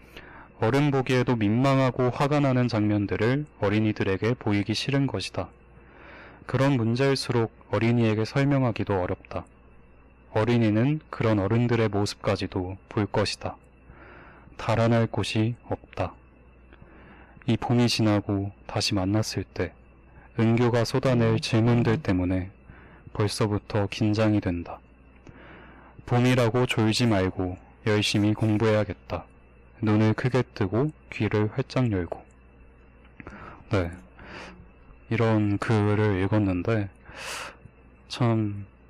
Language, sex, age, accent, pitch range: Korean, male, 20-39, native, 95-120 Hz